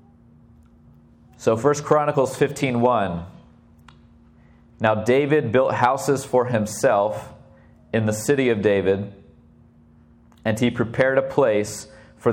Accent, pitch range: American, 100-125 Hz